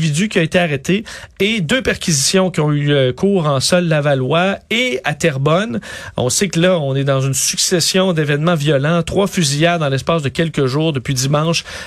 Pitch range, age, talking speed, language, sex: 135-175 Hz, 40-59, 185 wpm, French, male